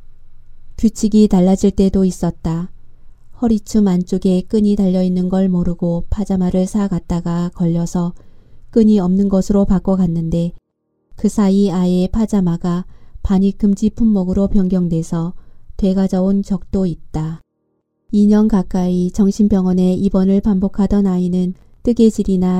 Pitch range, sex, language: 180-205 Hz, female, Korean